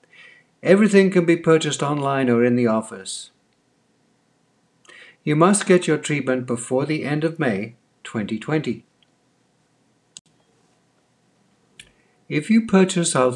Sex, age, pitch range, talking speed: male, 60-79, 125-165 Hz, 110 wpm